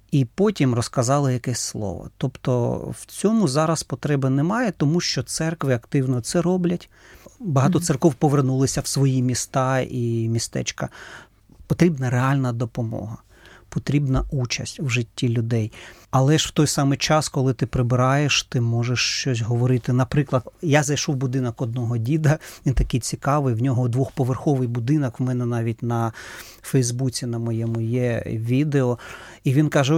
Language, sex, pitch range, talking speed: Ukrainian, male, 120-145 Hz, 145 wpm